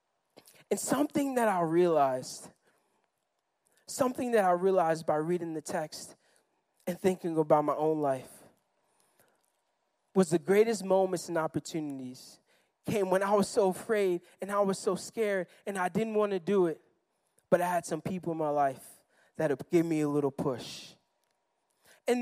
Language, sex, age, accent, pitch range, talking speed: English, male, 20-39, American, 190-285 Hz, 155 wpm